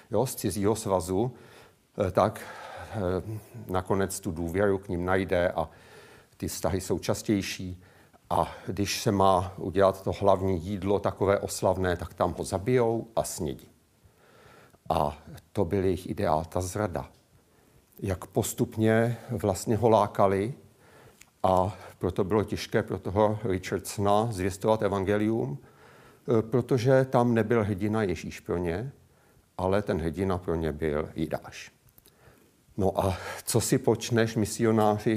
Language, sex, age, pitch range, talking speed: Czech, male, 50-69, 95-115 Hz, 125 wpm